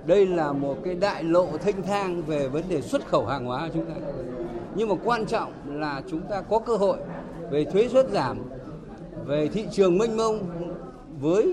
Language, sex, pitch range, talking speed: Vietnamese, male, 155-200 Hz, 200 wpm